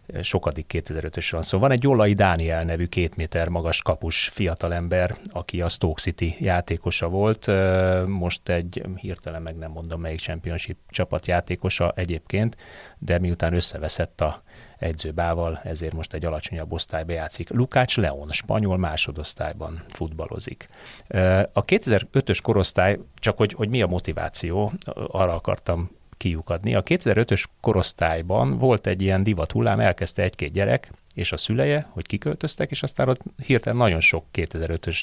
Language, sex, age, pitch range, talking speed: Hungarian, male, 30-49, 80-105 Hz, 140 wpm